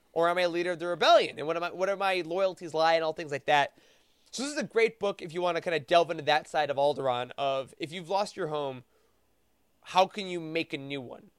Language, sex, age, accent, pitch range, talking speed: English, male, 20-39, American, 165-215 Hz, 280 wpm